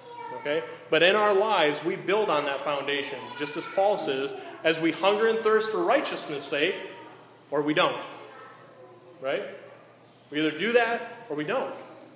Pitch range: 145-210 Hz